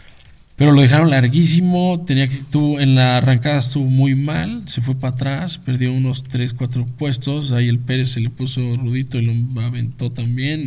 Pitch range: 120-135 Hz